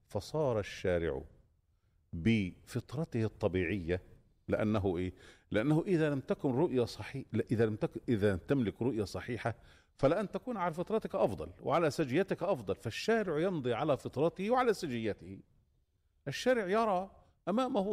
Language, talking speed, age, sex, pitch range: Arabic, 120 wpm, 50-69, male, 105-165 Hz